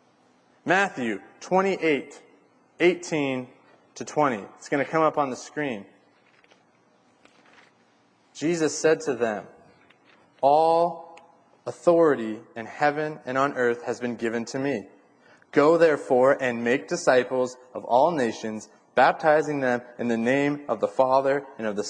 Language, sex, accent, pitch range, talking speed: English, male, American, 125-160 Hz, 135 wpm